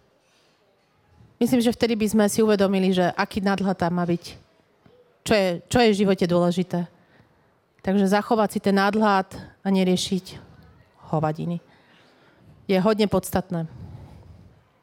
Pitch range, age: 190-220 Hz, 30-49